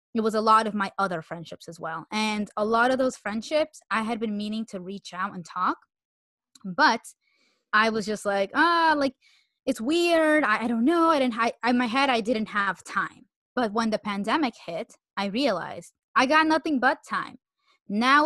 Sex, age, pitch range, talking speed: female, 20-39, 205-265 Hz, 195 wpm